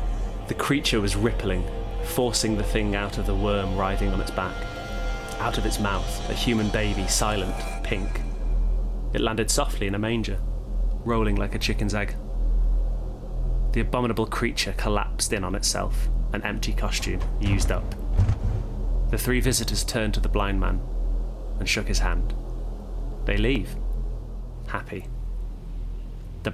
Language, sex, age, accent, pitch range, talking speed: English, male, 20-39, British, 100-115 Hz, 140 wpm